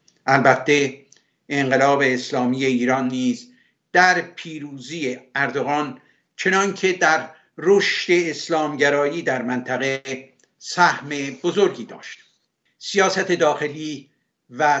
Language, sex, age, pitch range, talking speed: Persian, male, 60-79, 140-175 Hz, 80 wpm